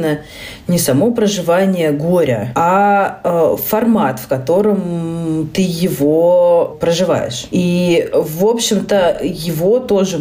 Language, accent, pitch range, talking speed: Russian, native, 140-190 Hz, 95 wpm